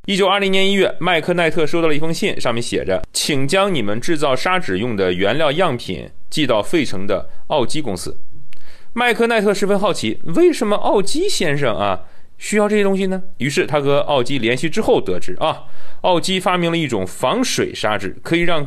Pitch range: 125-200 Hz